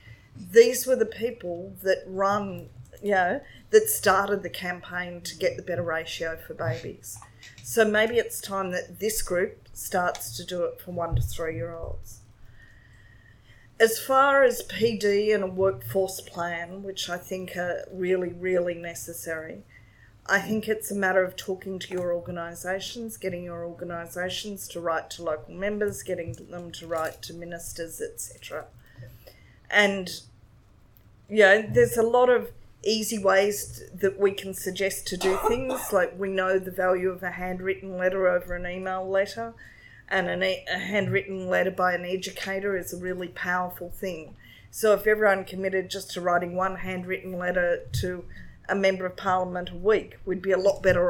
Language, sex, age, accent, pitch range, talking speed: English, female, 30-49, Australian, 170-195 Hz, 160 wpm